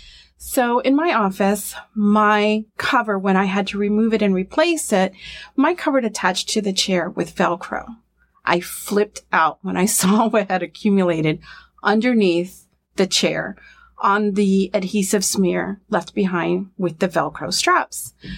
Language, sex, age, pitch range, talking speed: English, female, 30-49, 195-255 Hz, 145 wpm